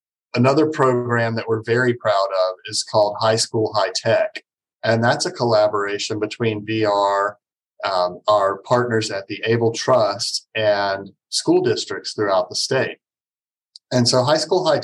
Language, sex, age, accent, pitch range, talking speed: English, male, 40-59, American, 105-125 Hz, 150 wpm